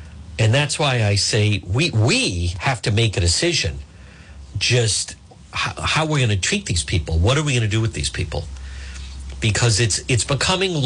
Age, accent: 50-69, American